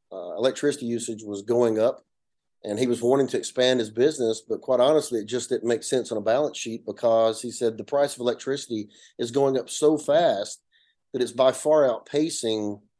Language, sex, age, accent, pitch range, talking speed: English, male, 30-49, American, 115-140 Hz, 200 wpm